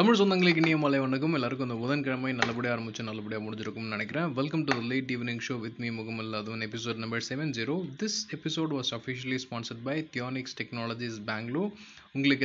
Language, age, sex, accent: Tamil, 20-39, male, native